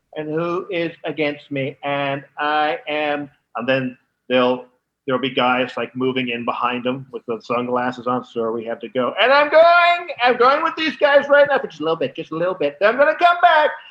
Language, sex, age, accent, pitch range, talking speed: English, male, 40-59, American, 125-170 Hz, 230 wpm